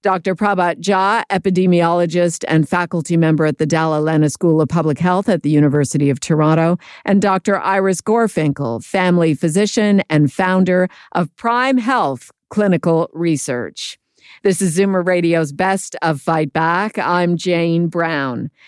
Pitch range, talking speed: 165-200 Hz, 140 wpm